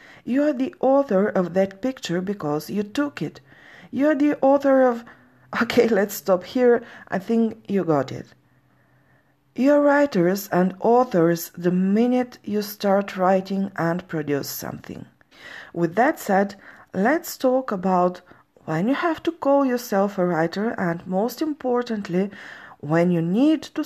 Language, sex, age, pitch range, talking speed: English, female, 40-59, 175-250 Hz, 150 wpm